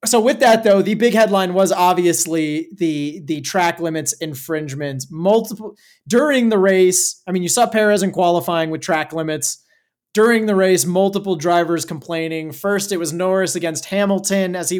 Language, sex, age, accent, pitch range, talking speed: English, male, 30-49, American, 160-195 Hz, 170 wpm